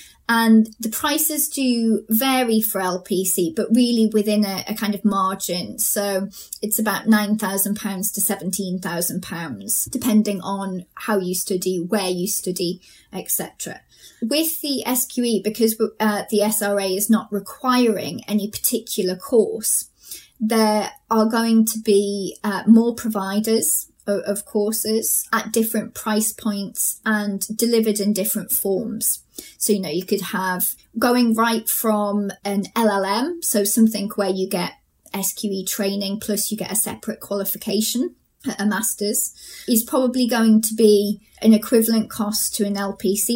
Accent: British